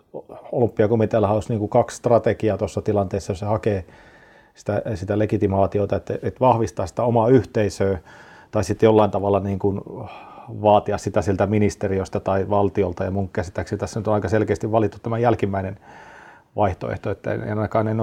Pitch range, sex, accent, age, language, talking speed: 100-115 Hz, male, native, 40-59, Finnish, 125 wpm